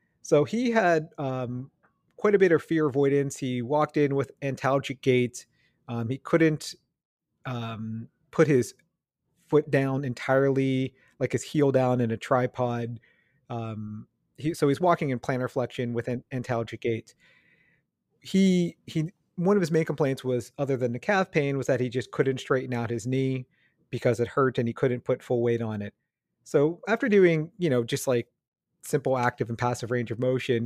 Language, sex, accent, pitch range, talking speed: English, male, American, 125-150 Hz, 175 wpm